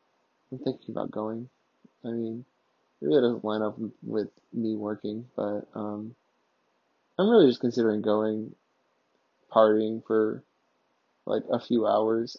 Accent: American